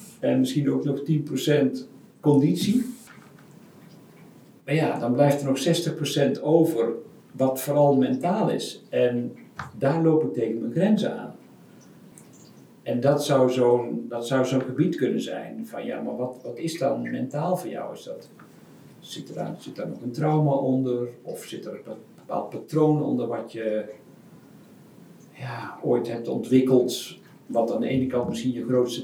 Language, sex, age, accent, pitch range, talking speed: Dutch, male, 50-69, Dutch, 125-160 Hz, 145 wpm